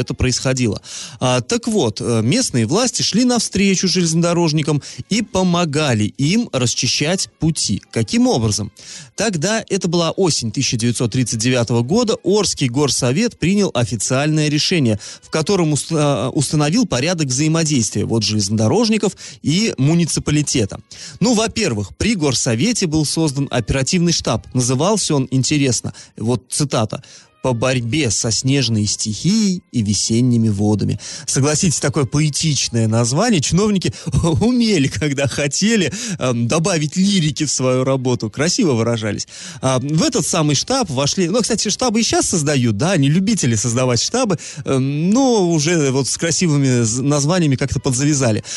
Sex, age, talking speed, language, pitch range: male, 30-49, 125 wpm, Russian, 120-180 Hz